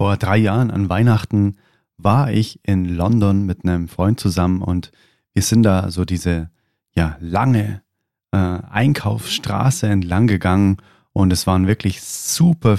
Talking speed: 135 wpm